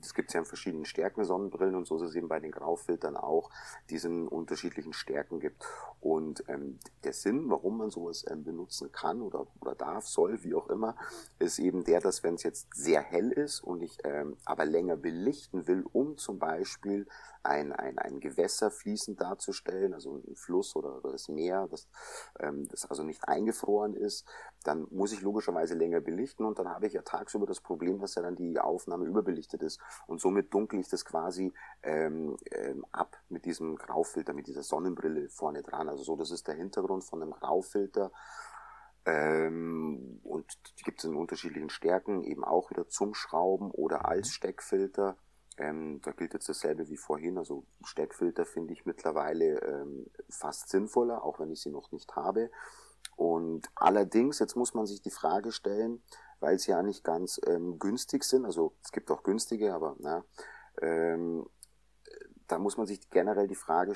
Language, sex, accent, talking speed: German, male, German, 180 wpm